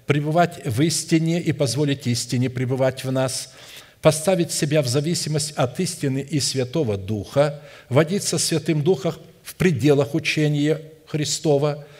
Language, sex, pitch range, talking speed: Russian, male, 140-165 Hz, 130 wpm